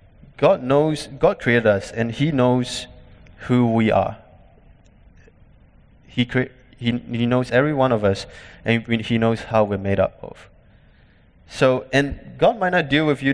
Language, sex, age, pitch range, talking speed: English, male, 20-39, 95-120 Hz, 160 wpm